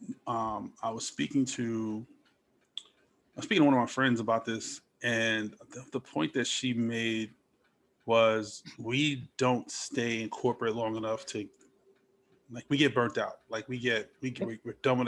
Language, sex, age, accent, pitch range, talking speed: English, male, 20-39, American, 110-125 Hz, 175 wpm